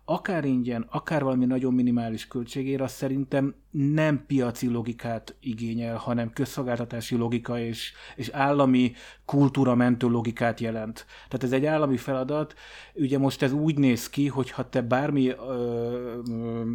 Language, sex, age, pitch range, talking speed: Hungarian, male, 30-49, 120-135 Hz, 145 wpm